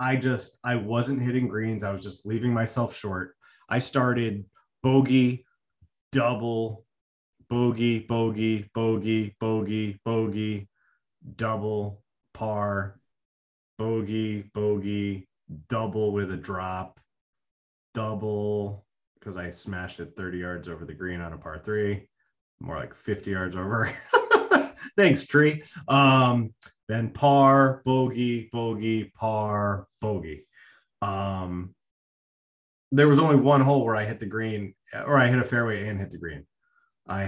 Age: 20-39